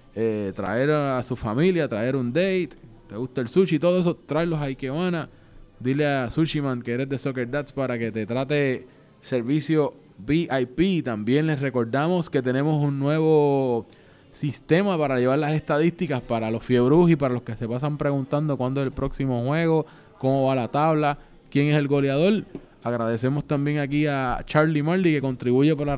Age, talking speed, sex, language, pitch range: 20-39, 175 wpm, male, Spanish, 130-155 Hz